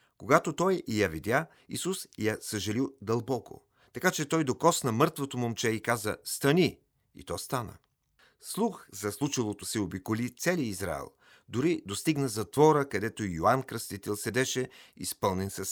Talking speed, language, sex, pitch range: 140 wpm, Bulgarian, male, 105-140 Hz